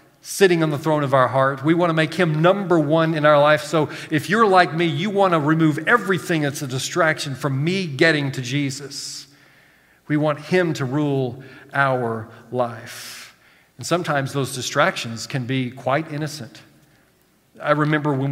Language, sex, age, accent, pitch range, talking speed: English, male, 40-59, American, 125-150 Hz, 175 wpm